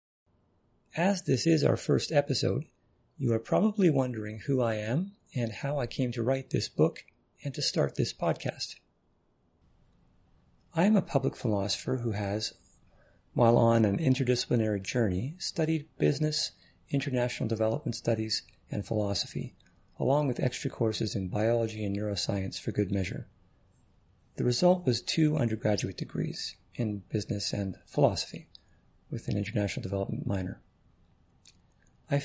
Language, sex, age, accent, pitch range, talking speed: English, male, 40-59, American, 100-140 Hz, 135 wpm